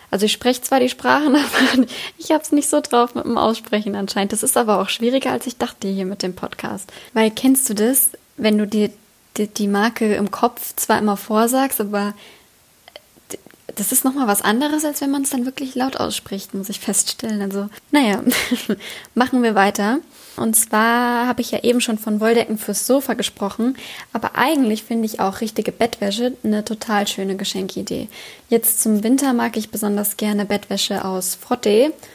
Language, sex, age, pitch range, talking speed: German, female, 10-29, 200-240 Hz, 185 wpm